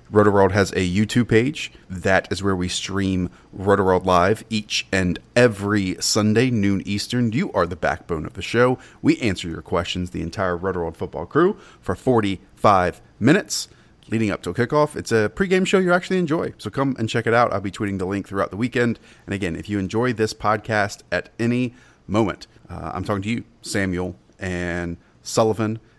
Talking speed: 185 wpm